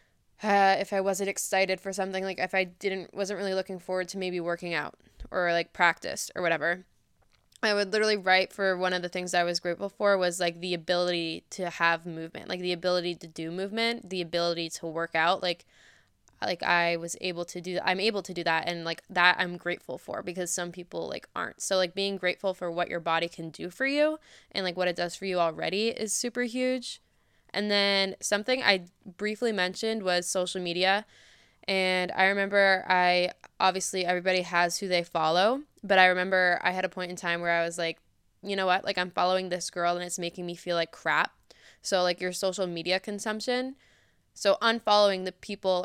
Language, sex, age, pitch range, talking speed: English, female, 10-29, 175-195 Hz, 205 wpm